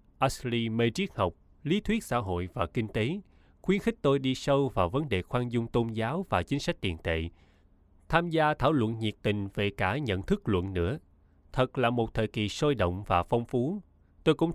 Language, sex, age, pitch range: Vietnamese, male, 20-39, 95-135 Hz